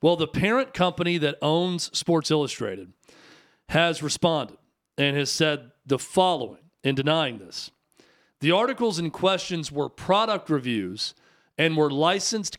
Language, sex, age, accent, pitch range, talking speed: English, male, 40-59, American, 140-175 Hz, 135 wpm